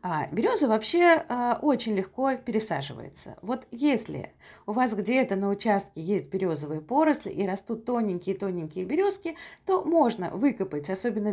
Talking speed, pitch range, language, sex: 125 wpm, 195-285 Hz, Russian, female